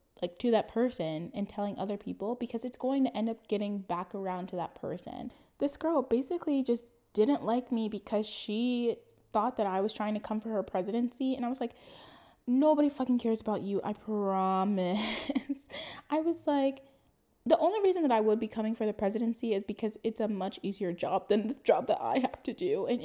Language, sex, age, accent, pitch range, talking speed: English, female, 10-29, American, 200-255 Hz, 210 wpm